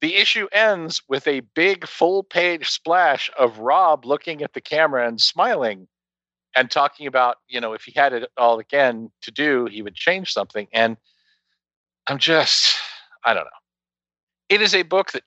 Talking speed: 175 wpm